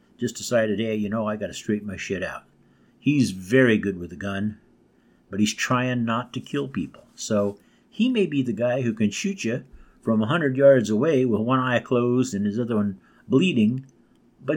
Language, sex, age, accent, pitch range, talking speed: English, male, 50-69, American, 110-140 Hz, 200 wpm